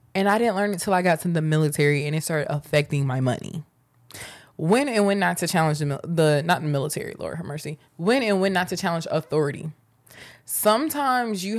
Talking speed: 205 wpm